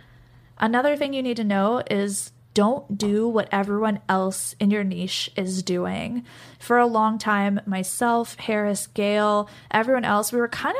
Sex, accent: female, American